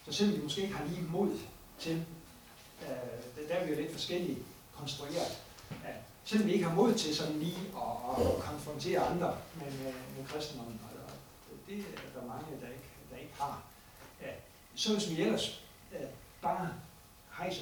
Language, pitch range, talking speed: Danish, 130-200 Hz, 155 wpm